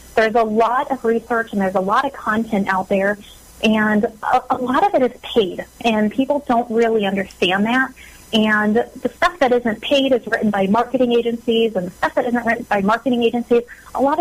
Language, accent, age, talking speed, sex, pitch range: English, American, 30-49, 205 wpm, female, 205-240 Hz